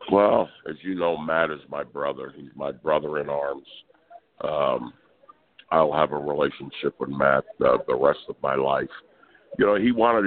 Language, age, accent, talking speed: English, 60-79, American, 175 wpm